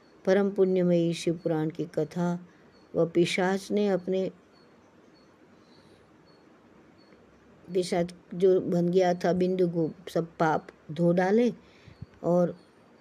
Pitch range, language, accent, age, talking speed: 165-195 Hz, Hindi, native, 50-69, 90 wpm